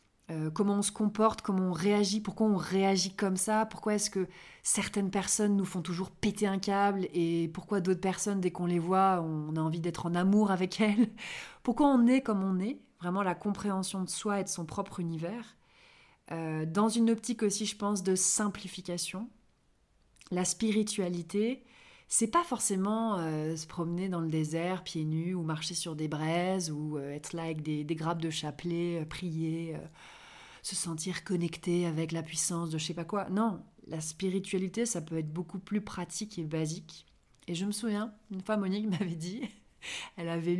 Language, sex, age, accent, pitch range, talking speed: French, female, 30-49, French, 170-210 Hz, 185 wpm